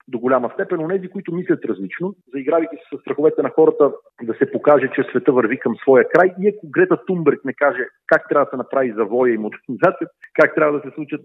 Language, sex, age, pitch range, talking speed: Bulgarian, male, 40-59, 135-195 Hz, 225 wpm